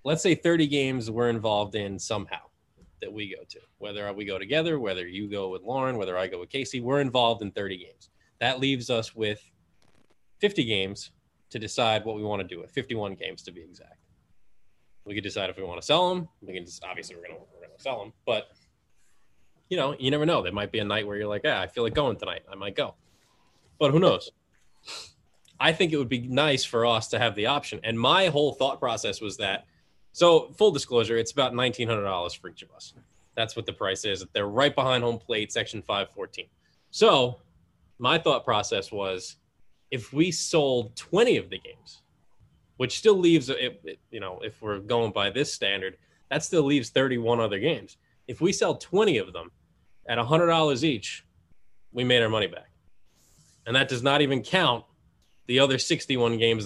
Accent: American